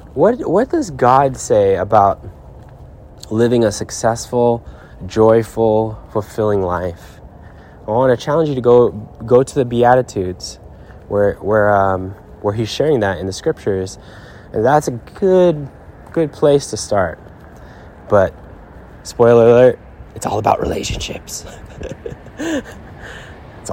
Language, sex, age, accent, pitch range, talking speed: English, male, 20-39, American, 95-120 Hz, 125 wpm